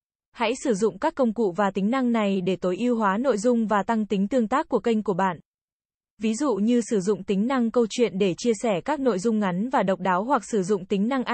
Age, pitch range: 20-39, 195-240 Hz